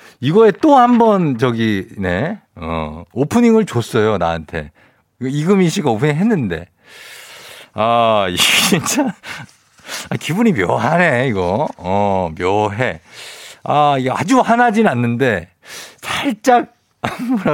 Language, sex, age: Korean, male, 50-69